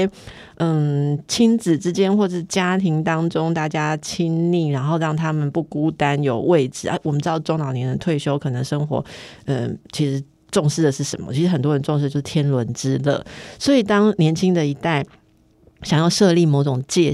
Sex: female